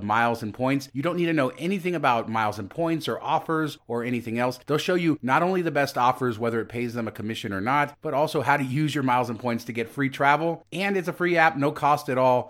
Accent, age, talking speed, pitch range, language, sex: American, 30-49, 270 wpm, 115-145 Hz, English, male